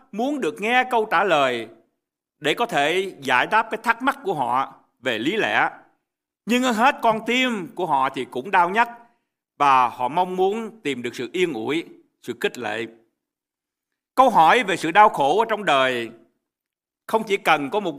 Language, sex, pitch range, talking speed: Vietnamese, male, 150-235 Hz, 185 wpm